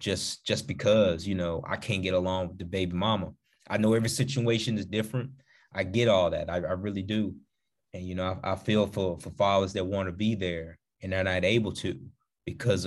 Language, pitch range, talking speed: English, 90-110 Hz, 220 wpm